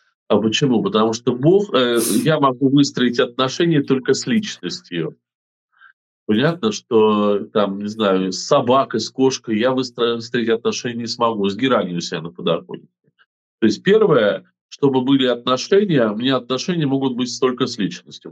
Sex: male